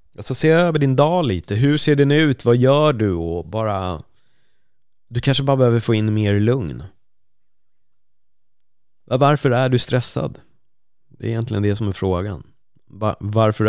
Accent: native